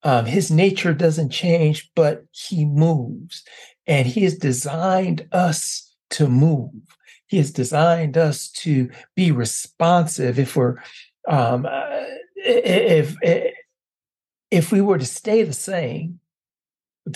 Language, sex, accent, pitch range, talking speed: English, male, American, 140-180 Hz, 120 wpm